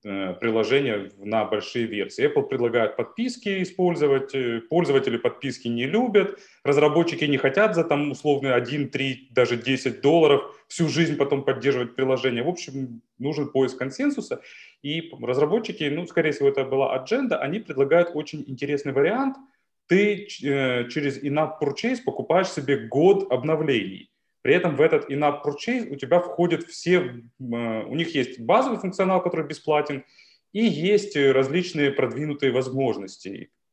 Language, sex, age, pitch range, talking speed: Ukrainian, male, 30-49, 135-190 Hz, 135 wpm